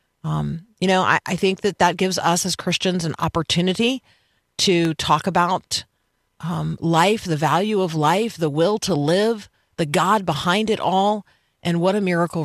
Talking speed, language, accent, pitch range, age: 175 wpm, English, American, 150-185 Hz, 40-59